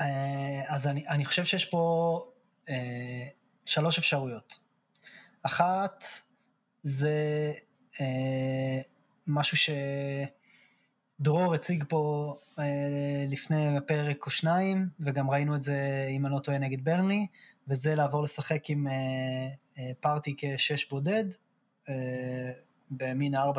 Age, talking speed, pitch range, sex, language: 20-39, 100 wpm, 135-180 Hz, male, Hebrew